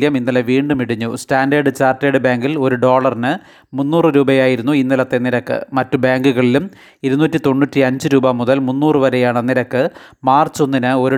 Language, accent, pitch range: Malayalam, native, 130-145 Hz